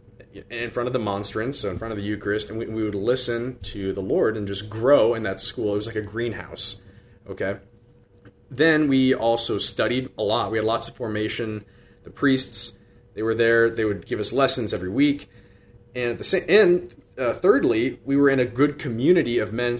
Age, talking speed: 20-39, 200 wpm